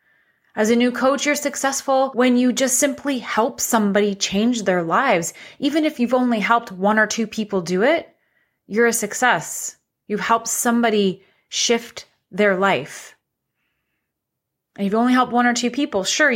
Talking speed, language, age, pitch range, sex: 160 wpm, English, 30-49, 185-225 Hz, female